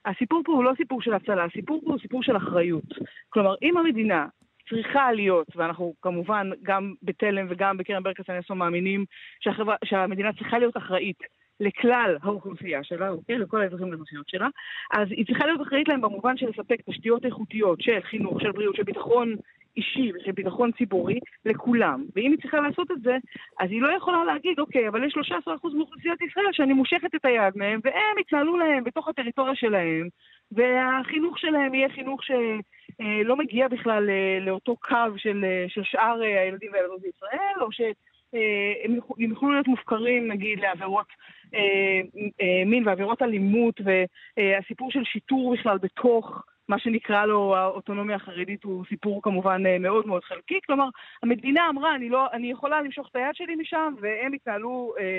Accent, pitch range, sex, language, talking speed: native, 195-270 Hz, female, Hebrew, 155 wpm